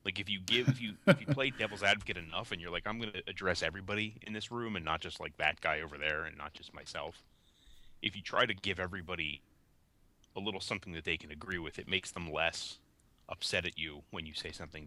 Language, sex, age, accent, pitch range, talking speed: English, male, 30-49, American, 80-105 Hz, 240 wpm